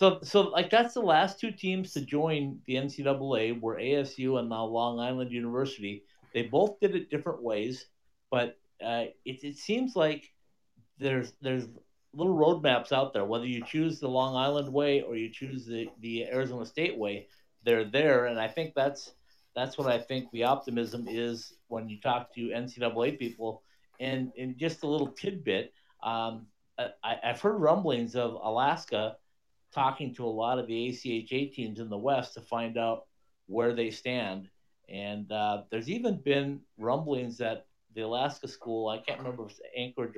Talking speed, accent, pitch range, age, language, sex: 175 wpm, American, 115-140 Hz, 50-69, English, male